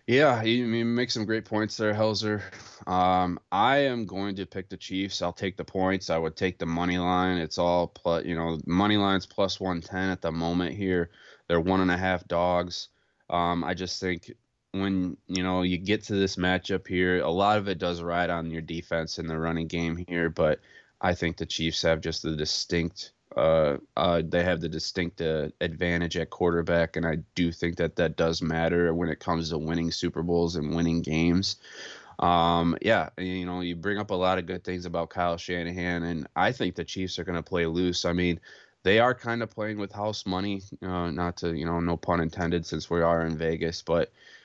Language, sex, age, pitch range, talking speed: English, male, 20-39, 85-95 Hz, 210 wpm